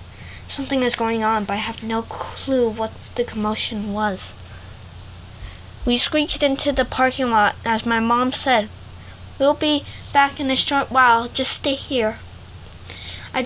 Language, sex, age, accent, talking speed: English, female, 20-39, American, 150 wpm